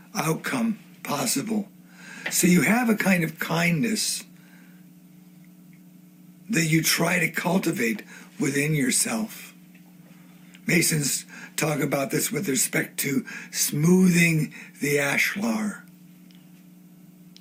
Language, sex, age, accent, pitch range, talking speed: English, male, 60-79, American, 170-195 Hz, 90 wpm